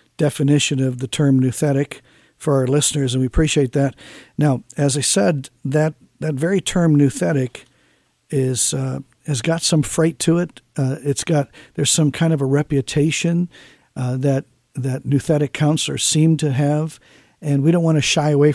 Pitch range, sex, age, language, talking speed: 135-150 Hz, male, 50-69, English, 170 wpm